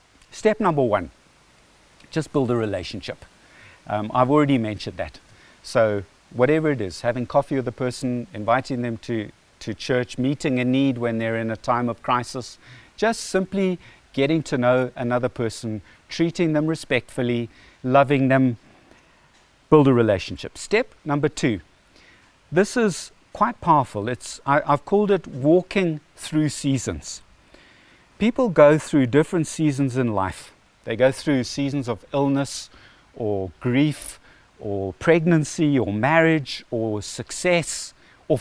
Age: 50-69